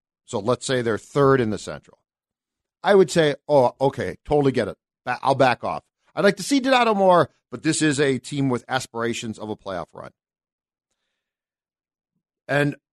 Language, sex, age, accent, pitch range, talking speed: English, male, 40-59, American, 110-160 Hz, 170 wpm